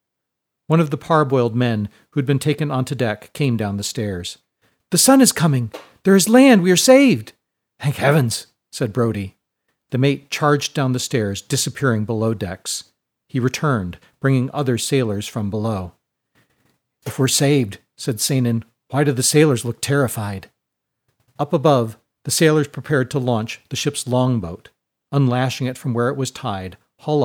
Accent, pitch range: American, 115-145 Hz